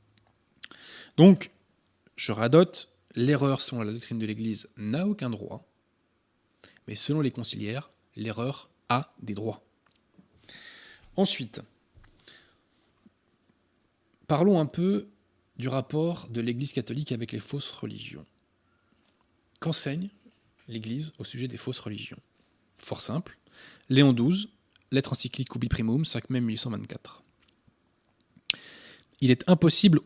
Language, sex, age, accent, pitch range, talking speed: French, male, 20-39, French, 110-150 Hz, 110 wpm